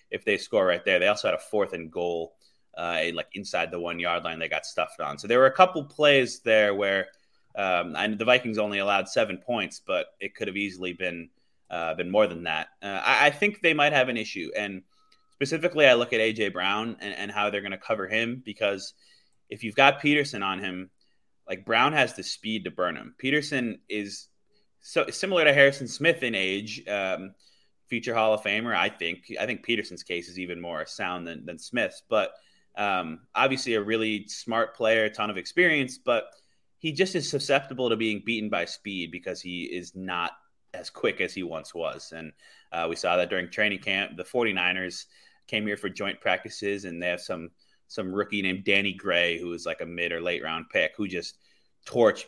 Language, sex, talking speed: English, male, 210 wpm